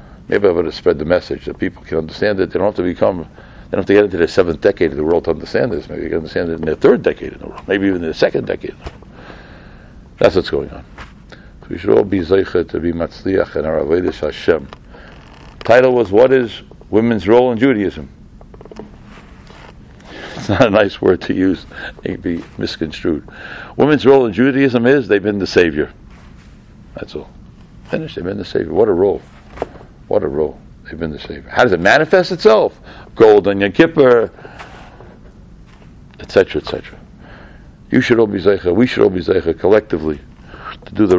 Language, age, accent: English, 60-79, American